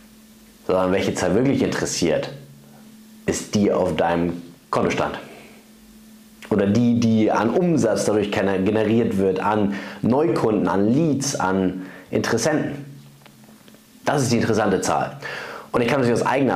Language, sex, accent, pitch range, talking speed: German, male, German, 90-145 Hz, 125 wpm